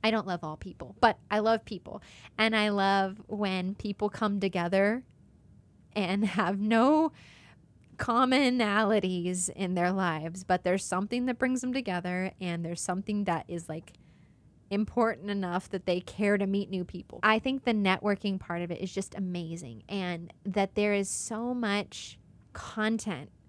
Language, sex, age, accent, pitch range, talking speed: English, female, 20-39, American, 180-215 Hz, 160 wpm